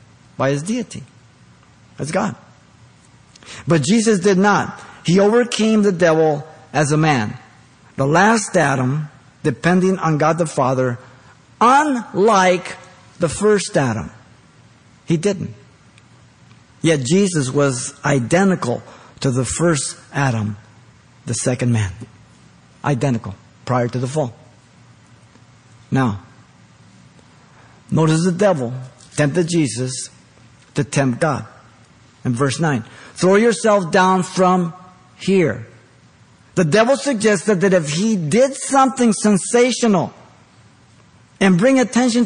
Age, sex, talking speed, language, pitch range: 50-69, male, 105 wpm, English, 125-210 Hz